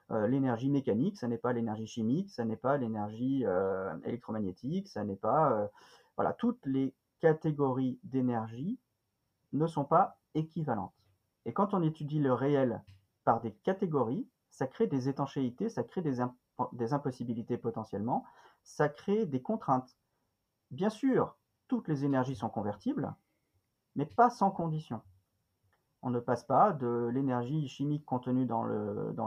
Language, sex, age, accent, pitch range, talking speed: French, male, 40-59, French, 115-160 Hz, 140 wpm